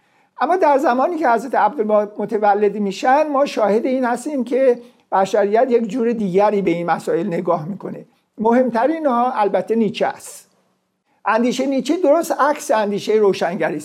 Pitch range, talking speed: 200-255 Hz, 145 wpm